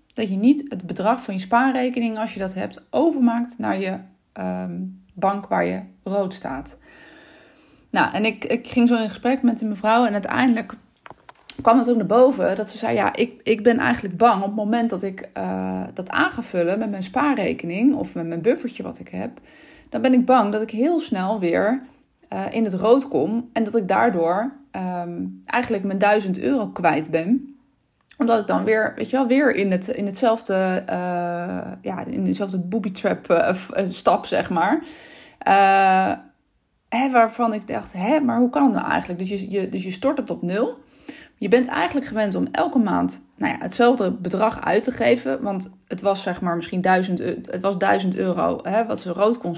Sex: female